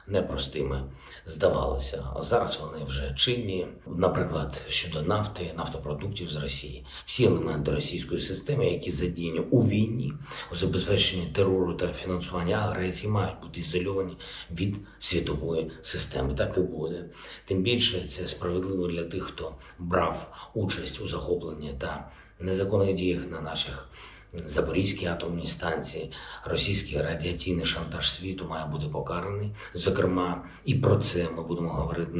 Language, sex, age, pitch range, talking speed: Ukrainian, male, 50-69, 80-95 Hz, 130 wpm